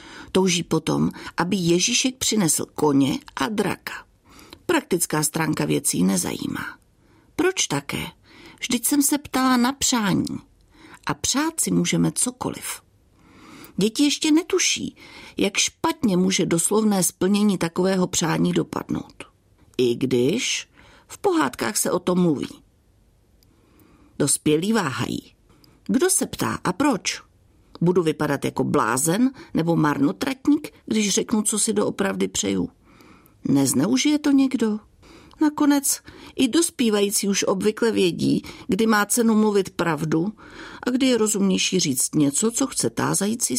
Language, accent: Czech, native